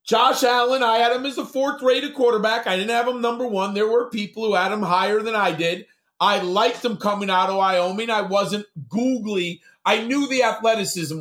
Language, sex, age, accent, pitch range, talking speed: English, male, 40-59, American, 190-230 Hz, 215 wpm